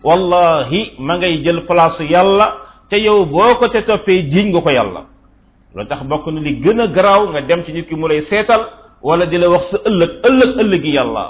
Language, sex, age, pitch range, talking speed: French, male, 50-69, 155-195 Hz, 180 wpm